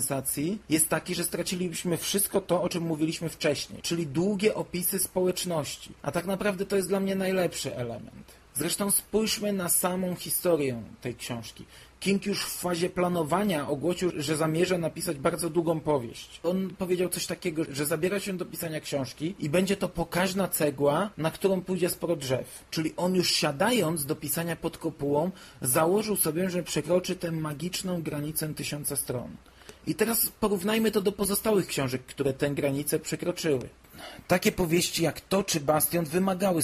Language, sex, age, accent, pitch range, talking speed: Polish, male, 40-59, native, 150-185 Hz, 160 wpm